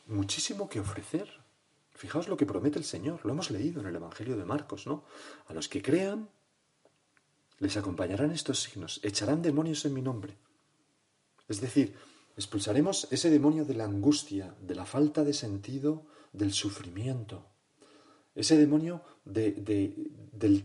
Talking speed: 140 wpm